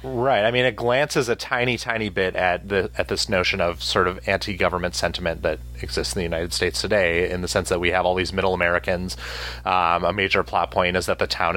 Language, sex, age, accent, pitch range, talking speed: English, male, 30-49, American, 90-110 Hz, 235 wpm